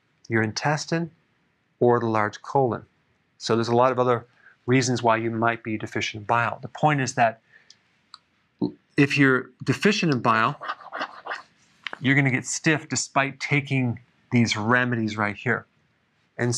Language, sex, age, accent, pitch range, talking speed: English, male, 40-59, American, 115-140 Hz, 150 wpm